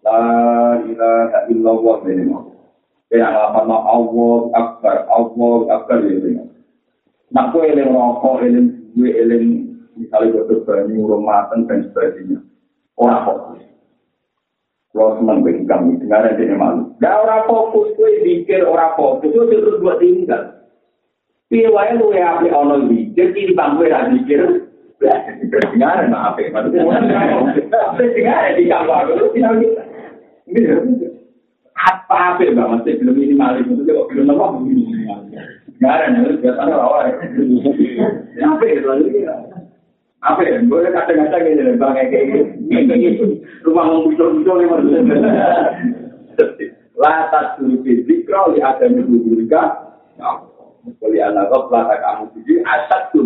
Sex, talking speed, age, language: male, 60 wpm, 50-69, Indonesian